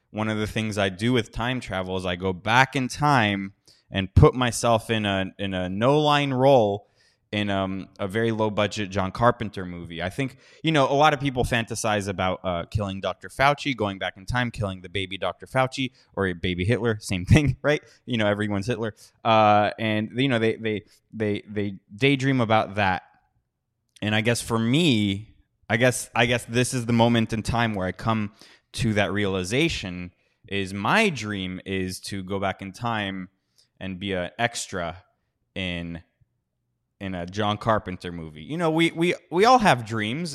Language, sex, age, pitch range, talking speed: English, male, 20-39, 100-135 Hz, 185 wpm